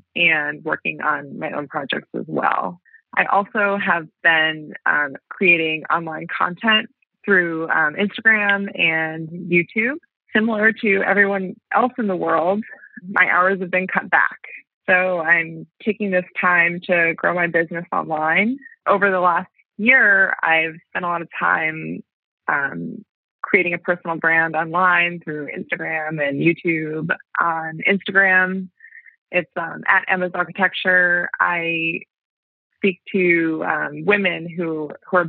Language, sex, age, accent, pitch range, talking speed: English, female, 20-39, American, 160-195 Hz, 135 wpm